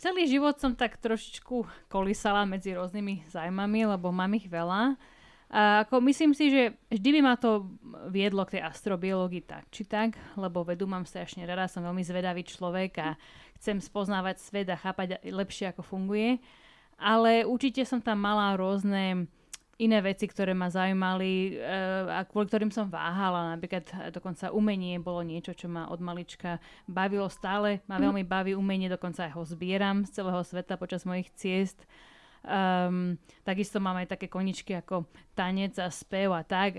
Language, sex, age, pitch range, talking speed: Slovak, female, 30-49, 185-215 Hz, 165 wpm